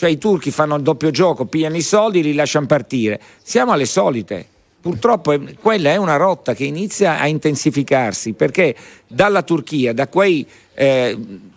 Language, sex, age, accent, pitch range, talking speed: Italian, male, 50-69, native, 135-180 Hz, 170 wpm